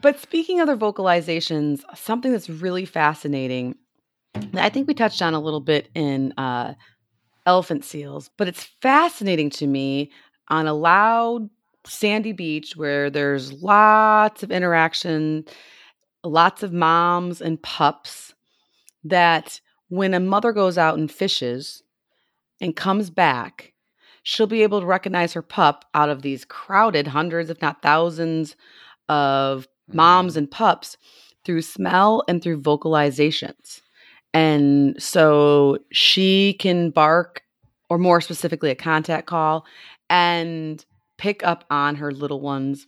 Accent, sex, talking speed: American, female, 130 wpm